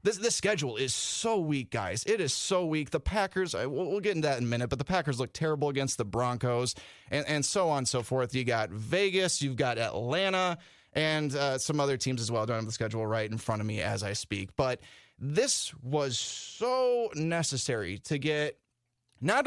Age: 20-39